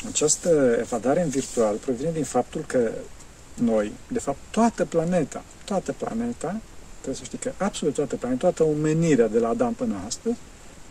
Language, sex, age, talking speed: Romanian, male, 50-69, 160 wpm